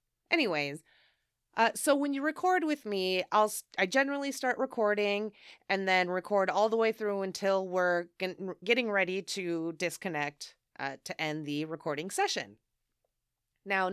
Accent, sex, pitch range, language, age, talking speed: American, female, 170-225 Hz, English, 30-49, 140 wpm